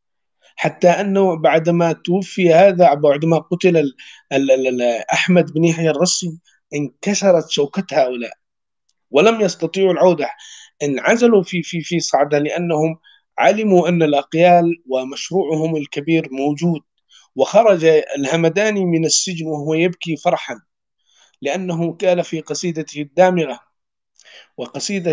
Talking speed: 100 wpm